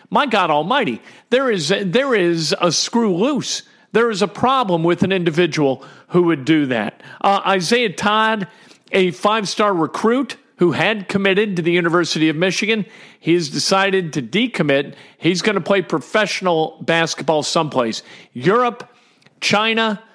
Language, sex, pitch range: English, male, 155-195 Hz